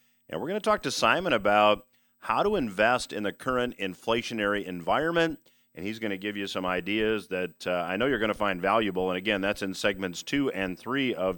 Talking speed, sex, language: 220 wpm, male, English